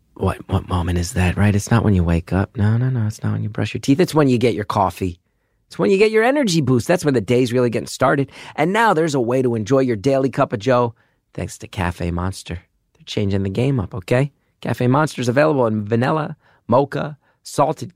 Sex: male